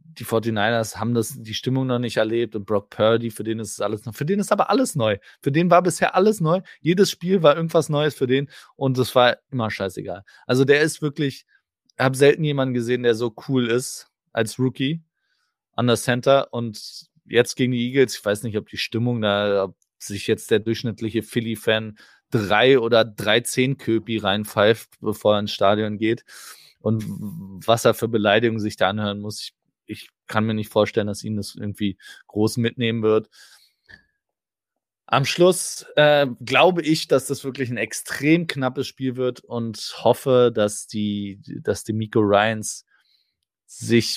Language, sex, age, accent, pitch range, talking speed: German, male, 20-39, German, 110-135 Hz, 180 wpm